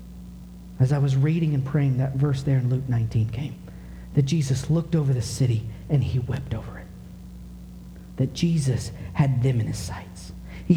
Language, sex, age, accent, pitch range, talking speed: English, male, 40-59, American, 110-160 Hz, 180 wpm